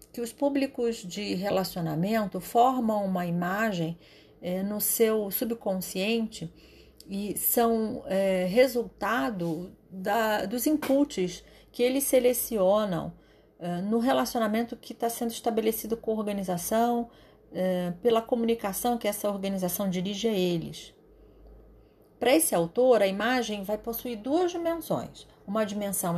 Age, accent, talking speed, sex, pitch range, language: 40-59, Brazilian, 120 wpm, female, 195-250 Hz, Portuguese